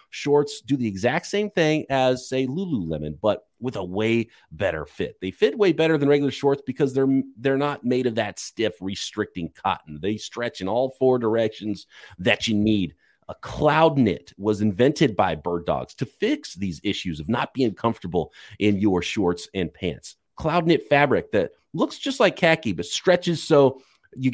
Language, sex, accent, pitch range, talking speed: English, male, American, 95-140 Hz, 180 wpm